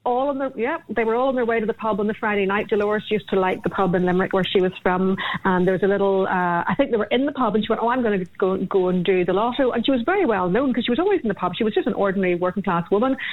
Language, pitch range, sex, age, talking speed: English, 185-230 Hz, female, 40-59, 340 wpm